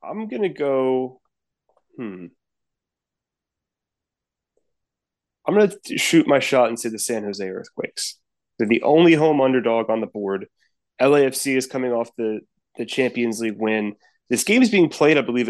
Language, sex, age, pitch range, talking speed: English, male, 20-39, 105-135 Hz, 155 wpm